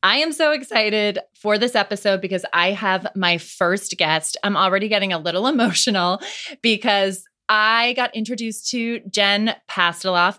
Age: 20-39